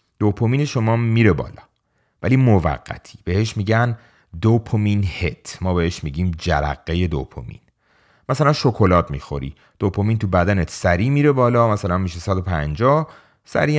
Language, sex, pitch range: Persian, male, 80-110 Hz